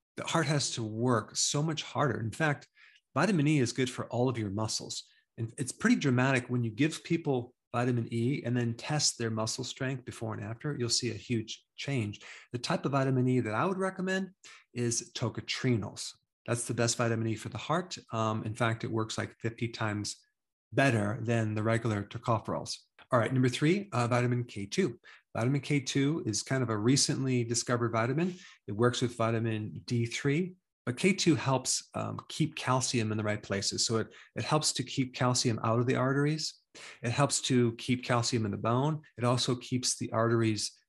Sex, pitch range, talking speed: male, 115-135 Hz, 190 wpm